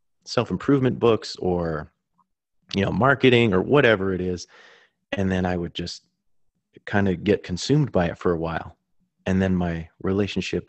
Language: English